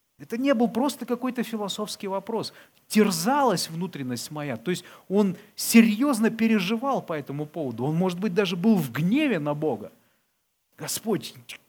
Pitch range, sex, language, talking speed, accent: 130-220 Hz, male, Russian, 145 wpm, native